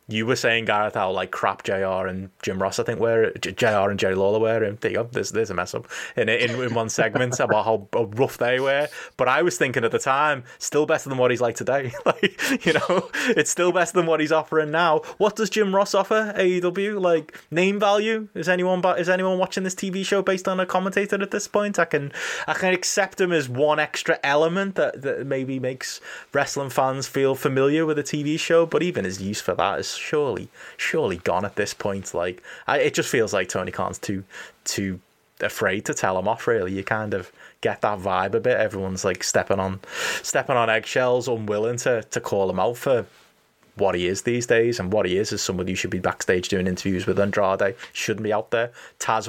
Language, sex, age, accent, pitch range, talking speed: English, male, 20-39, British, 105-170 Hz, 220 wpm